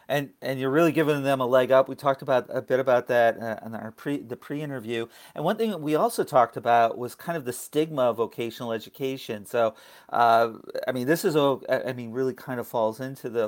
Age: 40-59